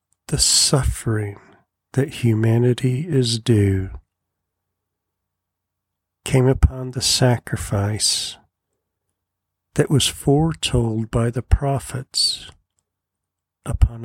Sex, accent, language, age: male, American, English, 50-69